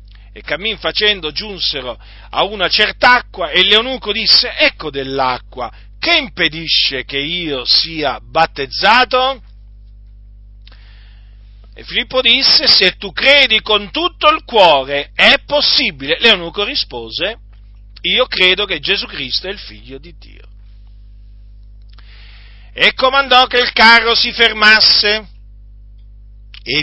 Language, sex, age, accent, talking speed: Italian, male, 40-59, native, 115 wpm